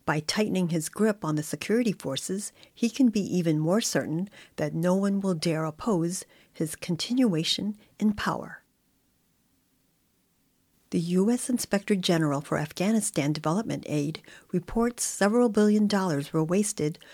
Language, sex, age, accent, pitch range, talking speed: English, female, 50-69, American, 160-210 Hz, 135 wpm